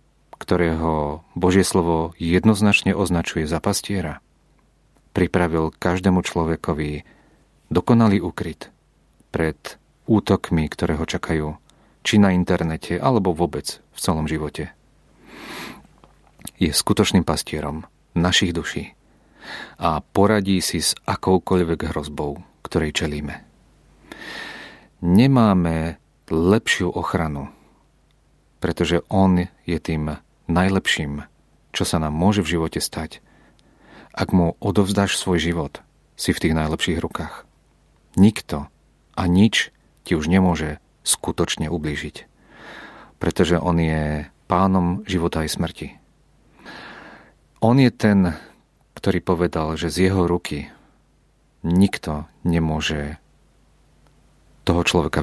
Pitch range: 80-95 Hz